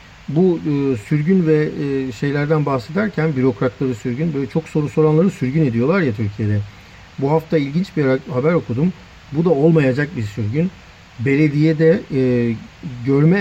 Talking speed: 125 wpm